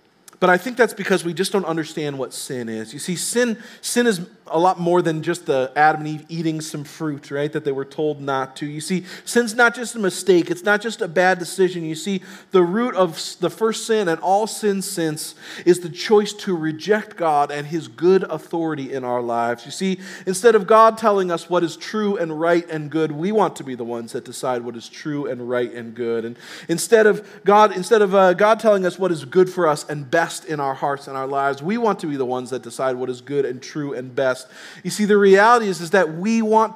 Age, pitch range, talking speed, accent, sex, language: 40-59, 140-195 Hz, 245 wpm, American, male, English